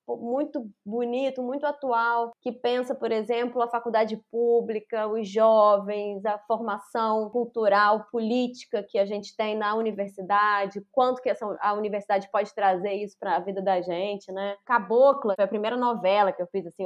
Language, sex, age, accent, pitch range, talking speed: Portuguese, female, 20-39, Brazilian, 195-240 Hz, 165 wpm